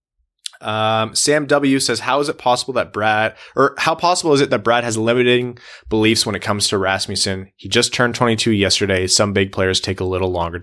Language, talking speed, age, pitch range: English, 210 wpm, 20-39, 90-115 Hz